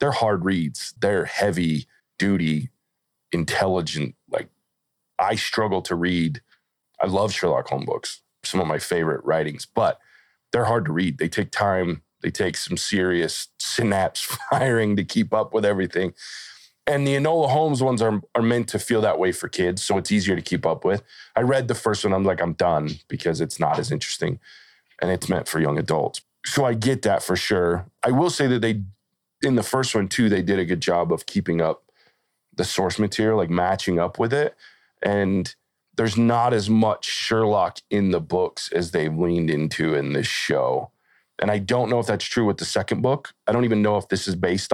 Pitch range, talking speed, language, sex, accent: 90-115 Hz, 200 wpm, English, male, American